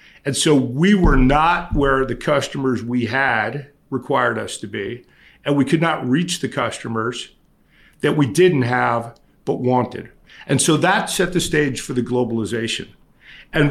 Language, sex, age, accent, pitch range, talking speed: English, male, 50-69, American, 125-150 Hz, 160 wpm